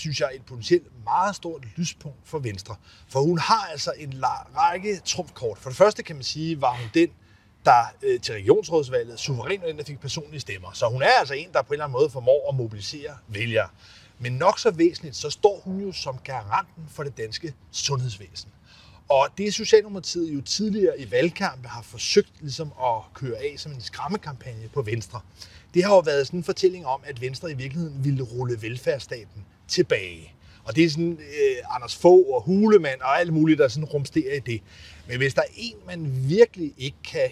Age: 30-49